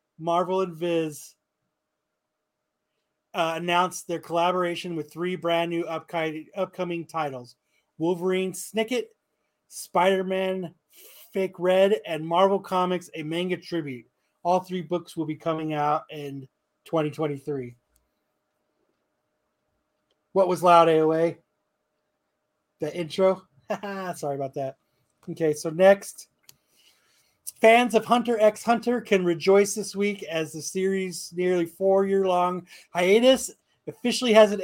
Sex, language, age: male, English, 30-49